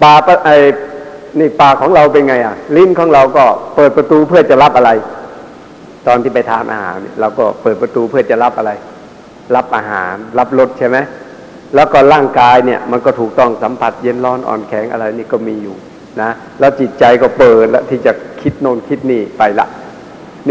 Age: 60-79